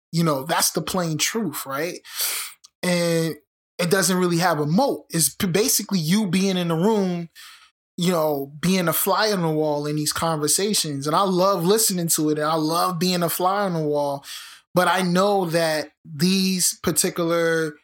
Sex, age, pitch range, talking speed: male, 20-39, 160-195 Hz, 180 wpm